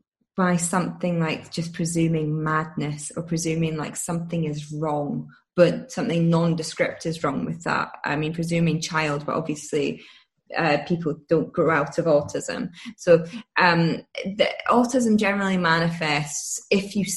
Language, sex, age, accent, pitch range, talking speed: English, female, 20-39, British, 155-185 Hz, 135 wpm